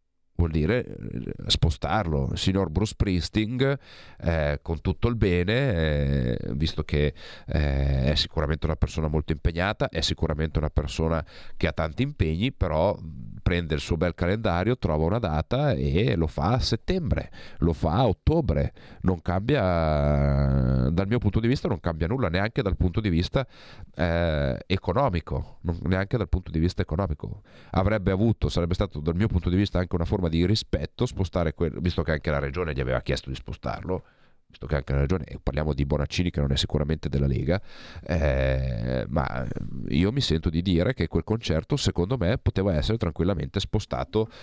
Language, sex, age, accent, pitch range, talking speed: Italian, male, 40-59, native, 75-95 Hz, 175 wpm